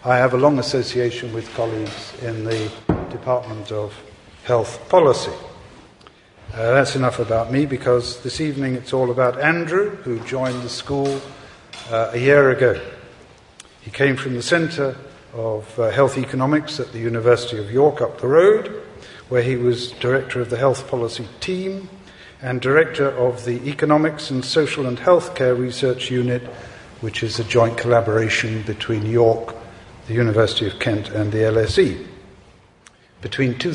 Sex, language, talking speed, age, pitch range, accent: male, English, 155 wpm, 50-69, 115-140 Hz, British